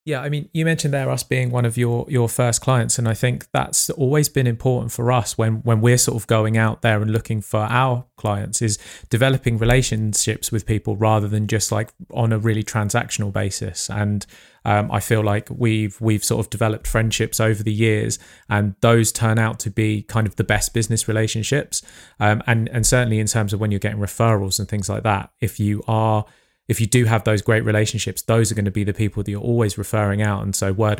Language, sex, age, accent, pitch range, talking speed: English, male, 30-49, British, 105-120 Hz, 225 wpm